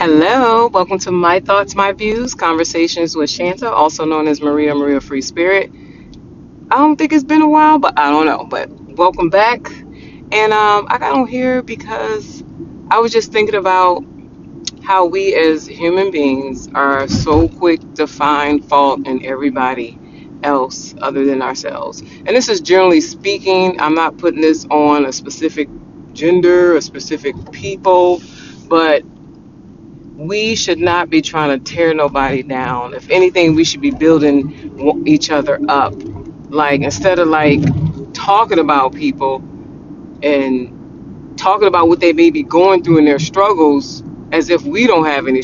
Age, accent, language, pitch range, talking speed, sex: 30-49, American, English, 140-185 Hz, 160 wpm, female